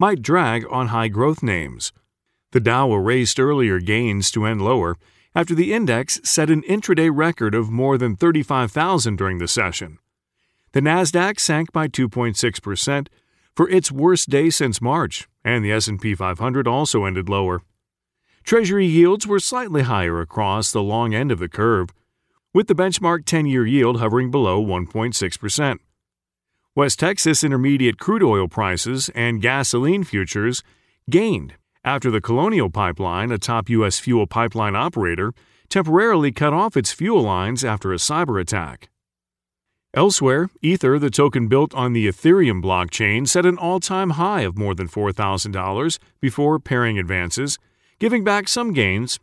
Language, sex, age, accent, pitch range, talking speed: English, male, 40-59, American, 105-155 Hz, 145 wpm